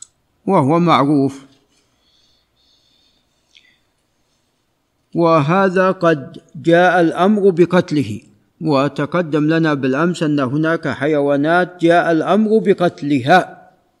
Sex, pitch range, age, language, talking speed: male, 145-180 Hz, 50-69, Arabic, 70 wpm